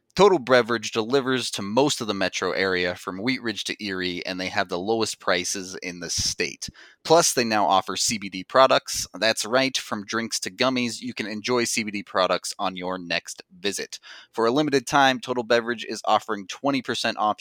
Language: English